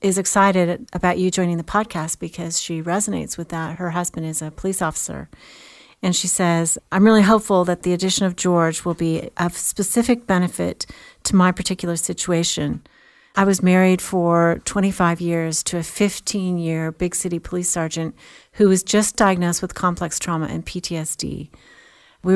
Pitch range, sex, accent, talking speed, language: 165-195 Hz, female, American, 165 wpm, English